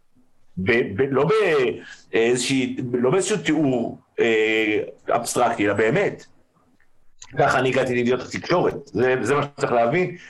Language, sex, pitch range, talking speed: Hebrew, male, 100-165 Hz, 115 wpm